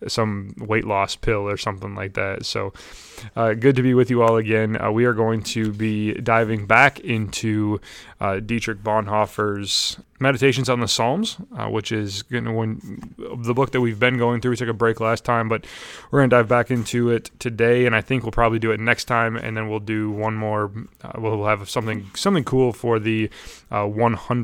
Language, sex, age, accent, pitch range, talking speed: English, male, 20-39, American, 105-125 Hz, 210 wpm